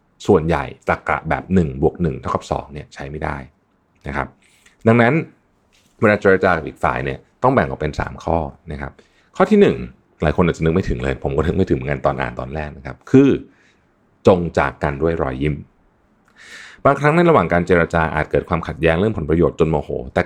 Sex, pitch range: male, 75-100 Hz